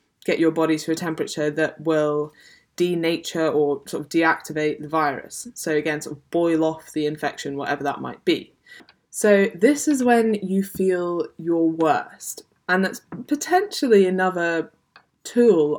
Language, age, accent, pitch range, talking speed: English, 10-29, British, 155-190 Hz, 150 wpm